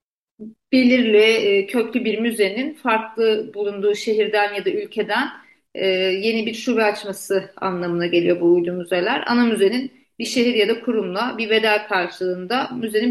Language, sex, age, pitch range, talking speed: Turkish, female, 40-59, 195-240 Hz, 135 wpm